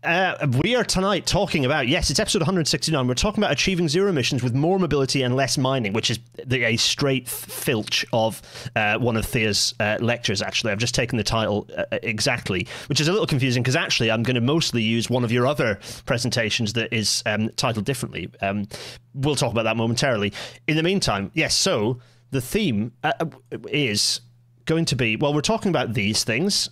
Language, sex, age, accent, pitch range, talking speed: English, male, 30-49, British, 115-145 Hz, 200 wpm